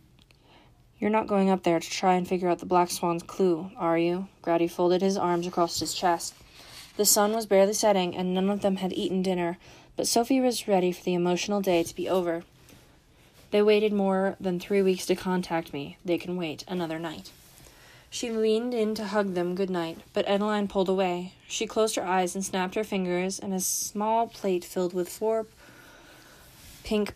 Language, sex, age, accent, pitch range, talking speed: English, female, 20-39, American, 175-205 Hz, 190 wpm